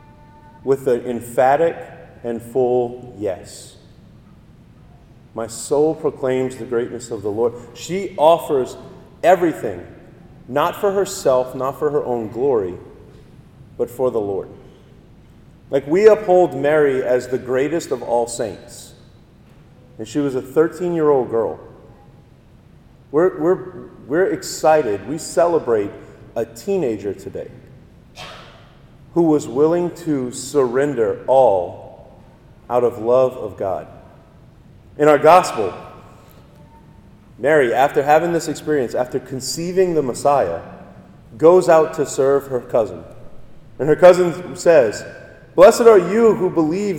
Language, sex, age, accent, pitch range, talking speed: English, male, 40-59, American, 130-185 Hz, 115 wpm